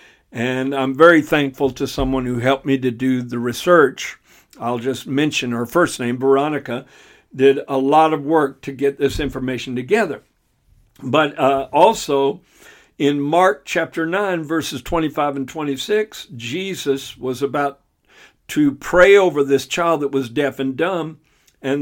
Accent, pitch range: American, 135-165 Hz